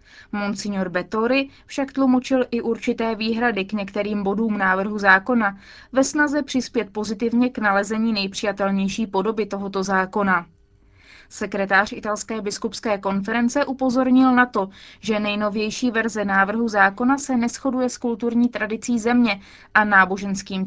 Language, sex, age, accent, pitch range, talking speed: Czech, female, 20-39, native, 200-245 Hz, 120 wpm